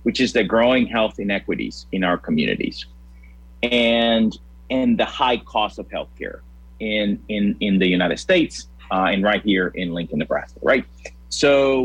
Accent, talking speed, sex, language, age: American, 155 wpm, male, English, 30-49